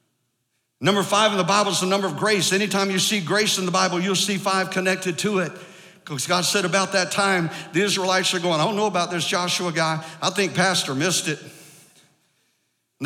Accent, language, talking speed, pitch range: American, English, 210 wpm, 160-200 Hz